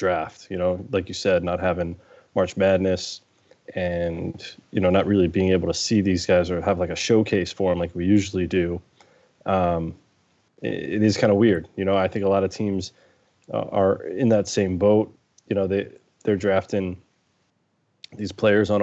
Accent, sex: American, male